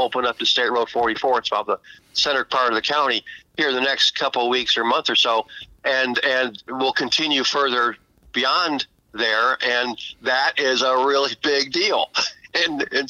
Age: 50-69